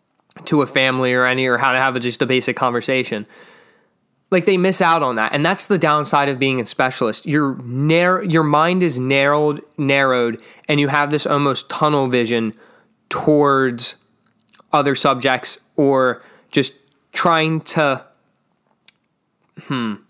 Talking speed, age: 145 wpm, 20-39